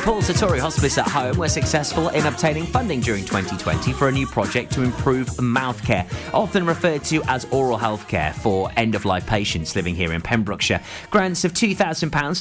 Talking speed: 190 wpm